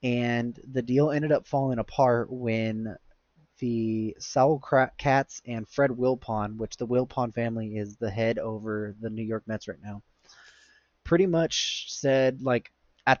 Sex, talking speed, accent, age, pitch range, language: male, 150 wpm, American, 20-39, 110-130 Hz, English